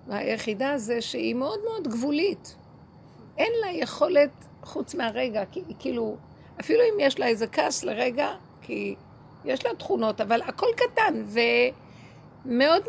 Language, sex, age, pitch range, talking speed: Hebrew, female, 50-69, 200-275 Hz, 130 wpm